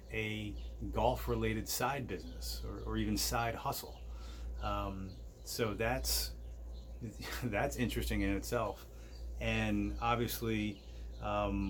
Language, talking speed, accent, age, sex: English, 105 wpm, American, 30-49, male